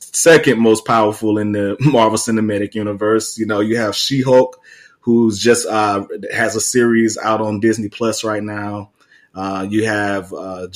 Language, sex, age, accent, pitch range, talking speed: English, male, 20-39, American, 105-115 Hz, 160 wpm